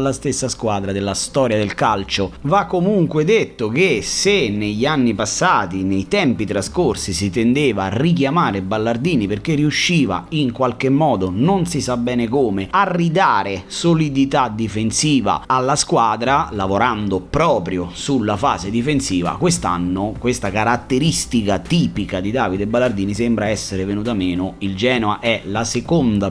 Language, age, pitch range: Italian, 30-49, 95-140 Hz